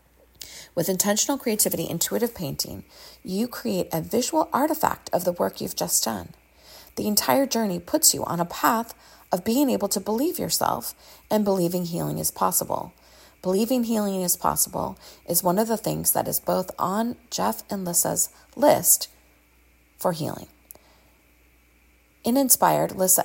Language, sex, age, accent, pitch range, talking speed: English, female, 30-49, American, 160-220 Hz, 145 wpm